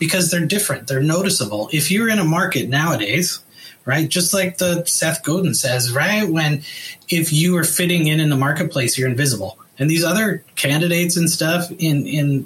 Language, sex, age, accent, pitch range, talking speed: English, male, 30-49, American, 145-180 Hz, 185 wpm